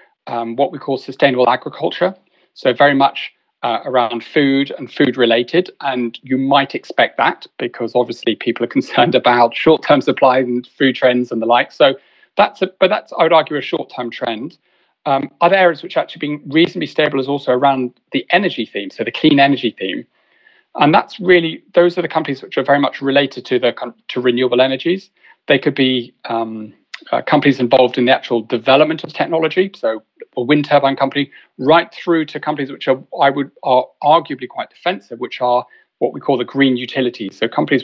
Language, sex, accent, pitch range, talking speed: English, male, British, 125-155 Hz, 195 wpm